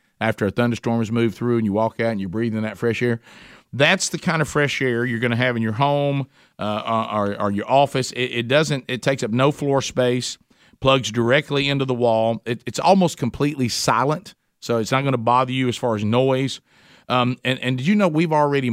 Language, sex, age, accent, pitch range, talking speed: English, male, 50-69, American, 120-145 Hz, 230 wpm